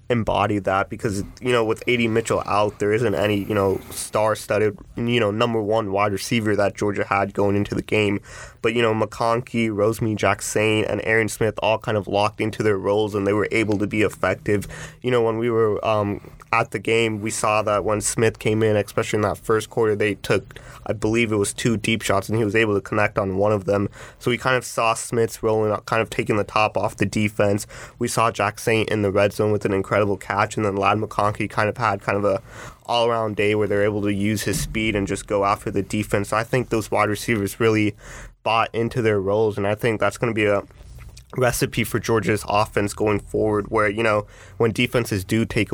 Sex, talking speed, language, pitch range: male, 230 wpm, English, 100-115 Hz